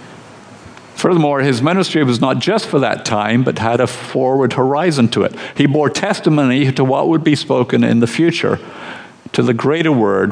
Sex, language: male, English